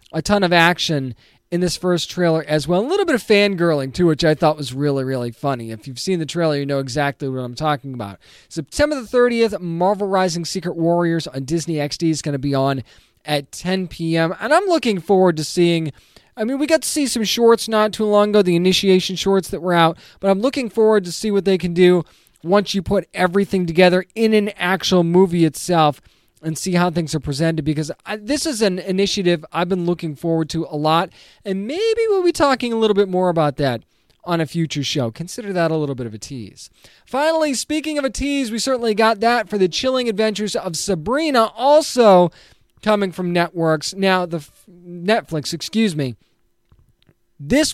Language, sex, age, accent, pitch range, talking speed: English, male, 20-39, American, 155-210 Hz, 205 wpm